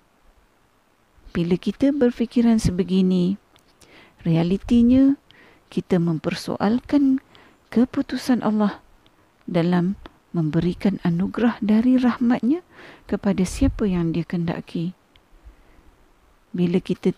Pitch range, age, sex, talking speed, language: 190-250 Hz, 50-69, female, 75 wpm, Malay